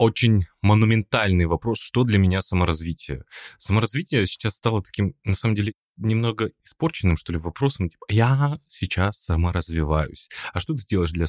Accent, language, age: native, Russian, 20-39